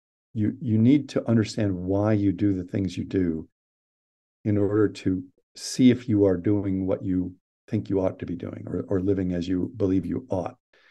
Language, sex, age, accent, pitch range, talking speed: English, male, 50-69, American, 100-125 Hz, 200 wpm